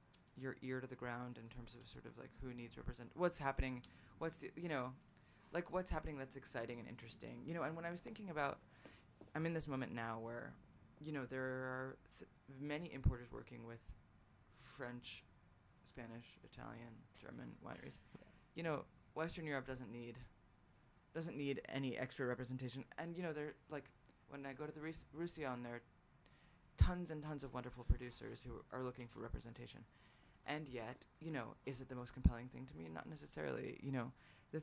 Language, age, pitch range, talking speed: English, 20-39, 120-150 Hz, 185 wpm